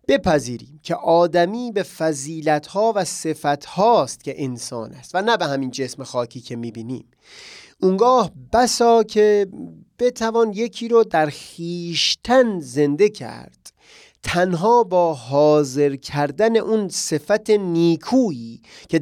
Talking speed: 115 wpm